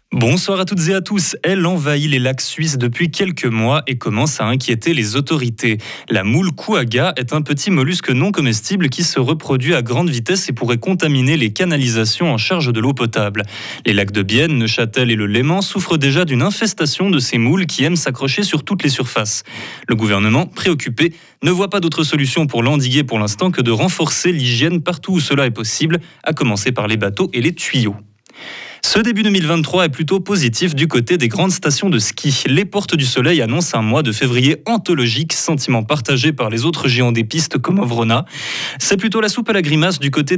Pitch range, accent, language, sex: 120-175 Hz, French, French, male